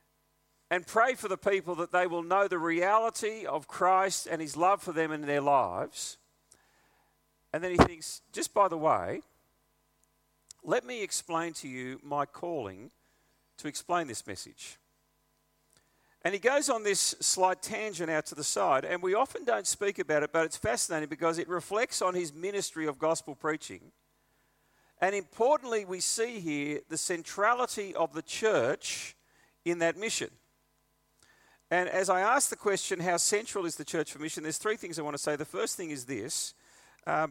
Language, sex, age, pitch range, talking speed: English, male, 40-59, 155-190 Hz, 175 wpm